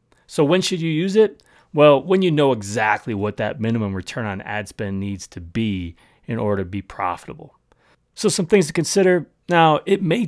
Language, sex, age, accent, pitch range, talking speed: English, male, 30-49, American, 105-155 Hz, 200 wpm